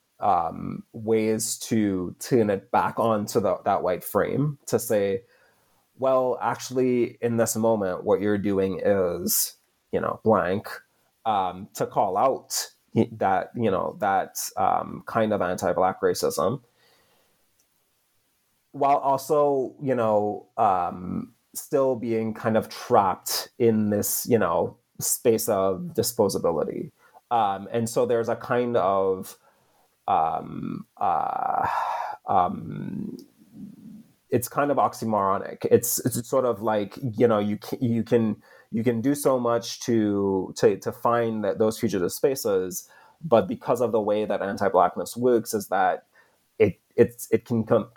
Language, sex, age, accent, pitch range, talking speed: English, male, 30-49, American, 105-130 Hz, 135 wpm